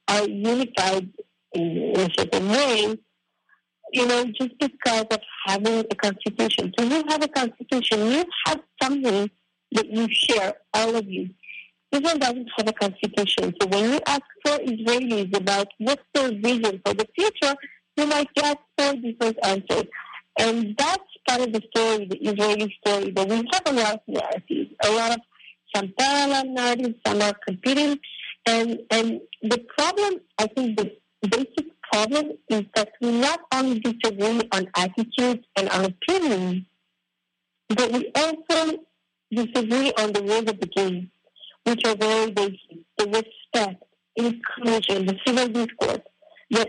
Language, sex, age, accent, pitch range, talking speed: English, female, 50-69, American, 210-260 Hz, 155 wpm